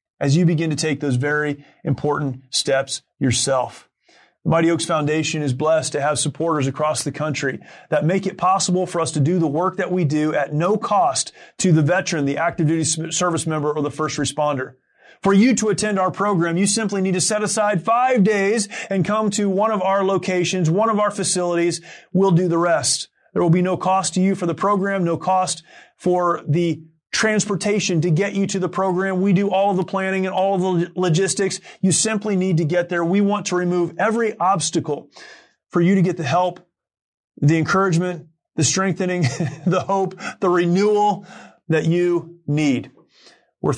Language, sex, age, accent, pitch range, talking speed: English, male, 30-49, American, 155-190 Hz, 190 wpm